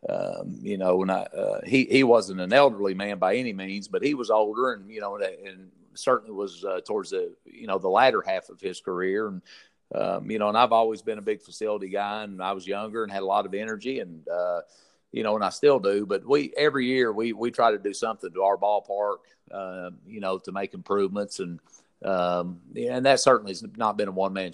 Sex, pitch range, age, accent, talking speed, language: male, 95-110 Hz, 40-59, American, 235 wpm, English